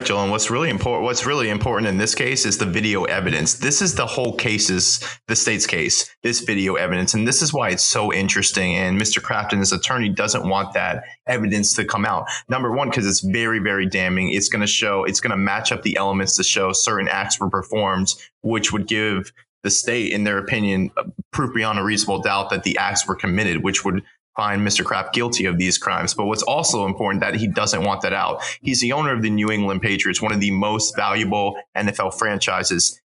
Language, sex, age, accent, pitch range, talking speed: English, male, 30-49, American, 100-120 Hz, 220 wpm